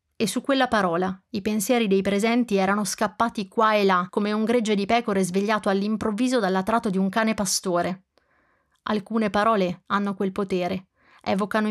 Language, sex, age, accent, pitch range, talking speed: Italian, female, 30-49, native, 190-225 Hz, 160 wpm